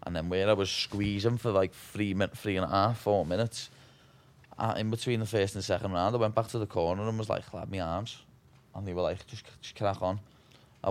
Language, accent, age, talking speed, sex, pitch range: English, British, 20-39, 260 wpm, male, 90-110 Hz